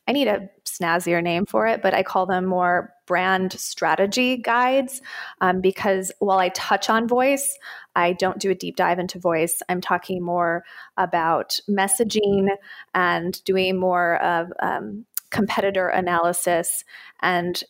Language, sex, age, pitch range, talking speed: English, female, 20-39, 180-215 Hz, 145 wpm